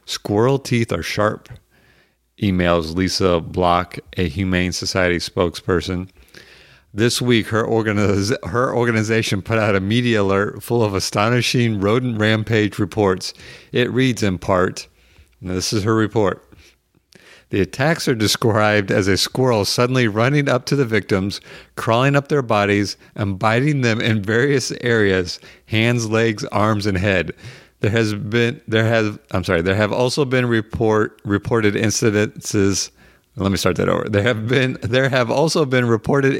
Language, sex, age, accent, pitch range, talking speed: English, male, 50-69, American, 100-125 Hz, 150 wpm